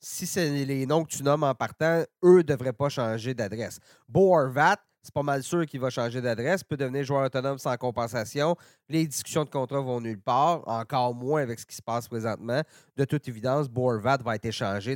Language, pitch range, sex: French, 125-175 Hz, male